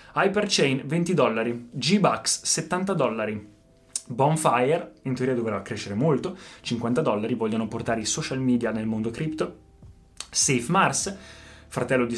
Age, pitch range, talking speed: 20-39, 120-165 Hz, 125 wpm